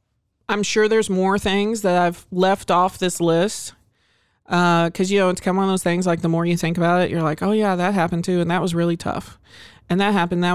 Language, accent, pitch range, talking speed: English, American, 170-195 Hz, 255 wpm